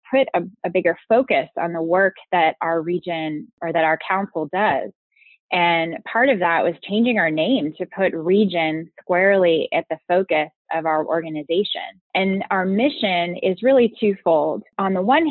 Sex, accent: female, American